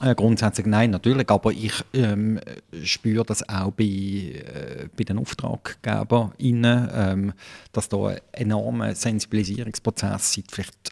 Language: German